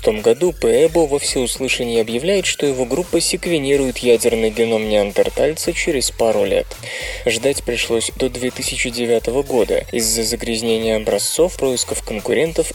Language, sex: Russian, male